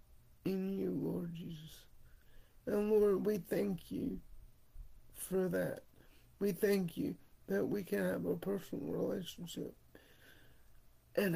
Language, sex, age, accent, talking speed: English, male, 50-69, American, 115 wpm